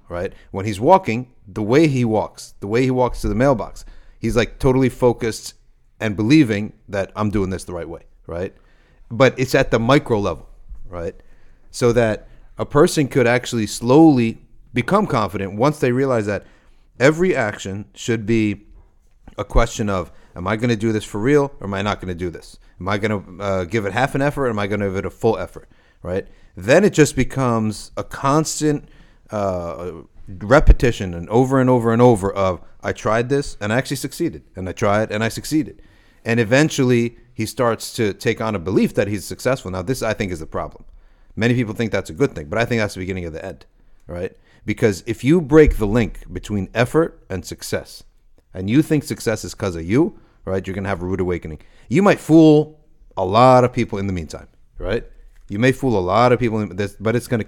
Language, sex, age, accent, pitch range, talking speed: English, male, 40-59, American, 100-130 Hz, 215 wpm